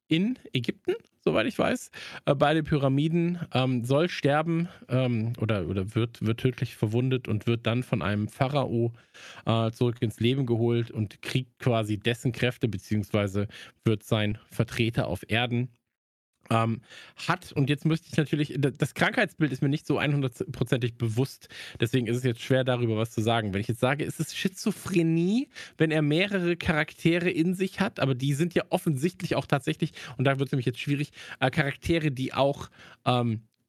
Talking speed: 170 wpm